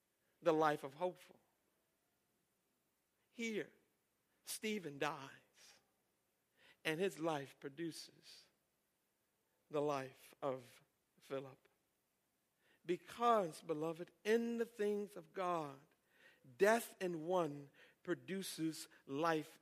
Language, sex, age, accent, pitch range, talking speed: English, male, 60-79, American, 175-290 Hz, 85 wpm